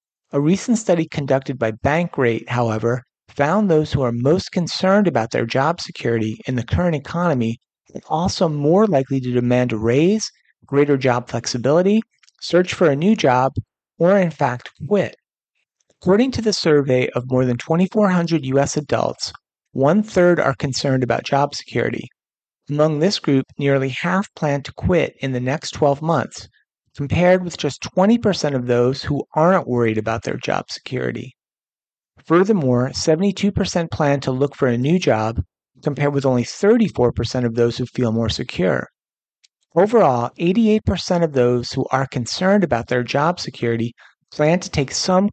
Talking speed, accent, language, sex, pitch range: 155 wpm, American, English, male, 125-175 Hz